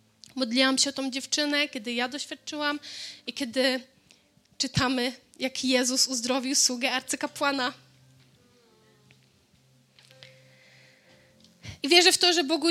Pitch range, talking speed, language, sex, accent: 255-295 Hz, 105 wpm, Polish, female, native